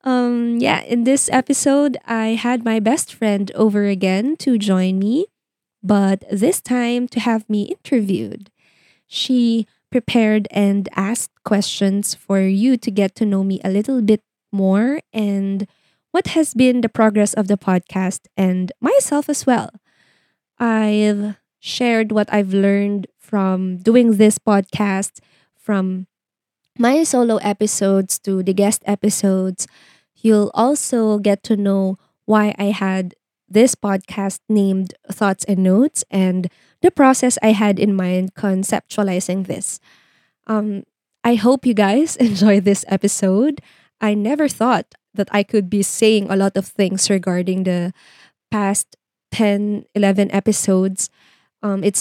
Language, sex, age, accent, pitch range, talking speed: Filipino, female, 20-39, native, 195-225 Hz, 135 wpm